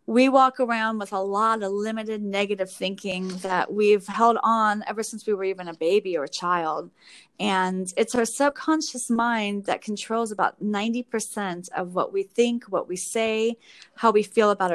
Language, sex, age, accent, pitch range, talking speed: English, female, 30-49, American, 190-230 Hz, 180 wpm